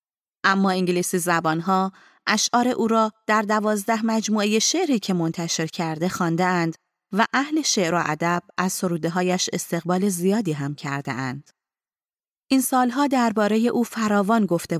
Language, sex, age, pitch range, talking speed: Persian, female, 30-49, 170-225 Hz, 135 wpm